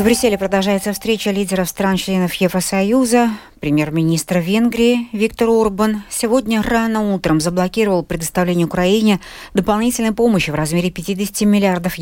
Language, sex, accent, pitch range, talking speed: Russian, female, native, 165-220 Hz, 115 wpm